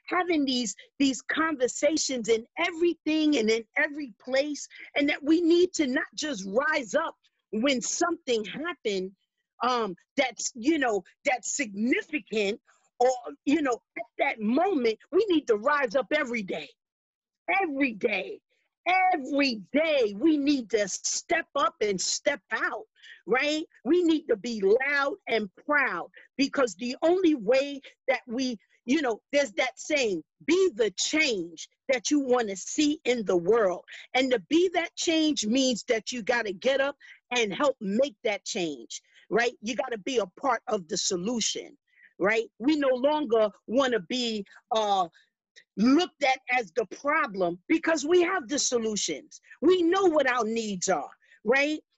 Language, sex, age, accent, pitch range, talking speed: English, female, 40-59, American, 235-320 Hz, 155 wpm